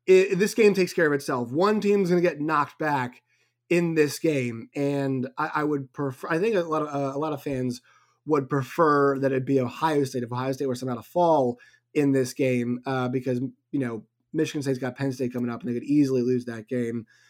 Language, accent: English, American